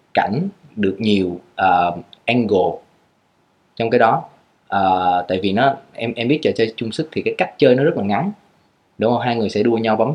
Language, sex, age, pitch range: Vietnamese, male, 20-39, 100-130 Hz